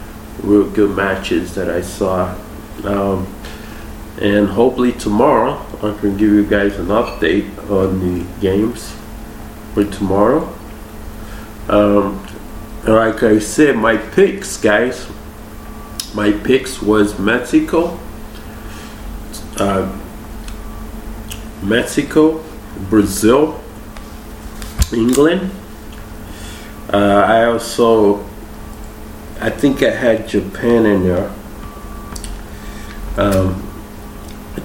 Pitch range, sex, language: 100-110 Hz, male, English